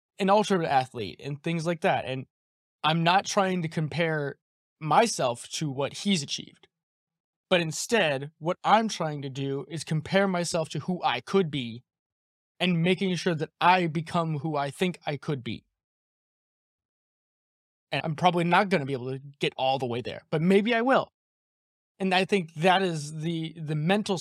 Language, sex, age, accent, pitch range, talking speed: English, male, 20-39, American, 145-185 Hz, 175 wpm